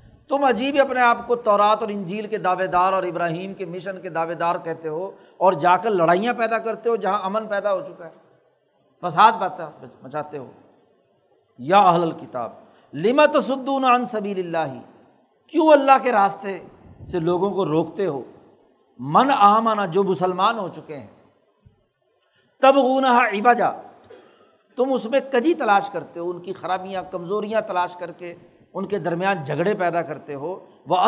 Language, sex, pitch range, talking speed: Urdu, male, 180-235 Hz, 160 wpm